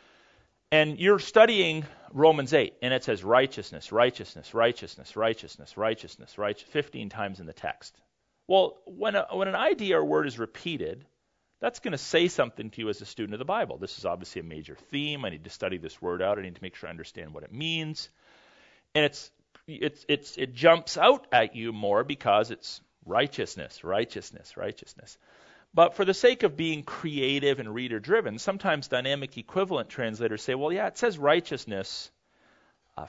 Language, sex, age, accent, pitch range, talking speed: English, male, 40-59, American, 110-160 Hz, 180 wpm